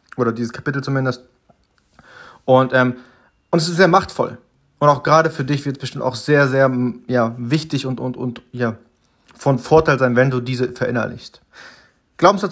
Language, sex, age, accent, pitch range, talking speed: German, male, 30-49, German, 125-160 Hz, 175 wpm